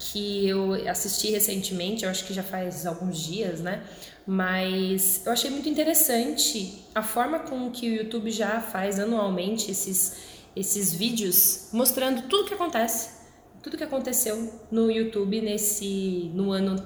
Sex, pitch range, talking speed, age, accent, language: female, 190-260 Hz, 145 wpm, 20-39, Brazilian, Portuguese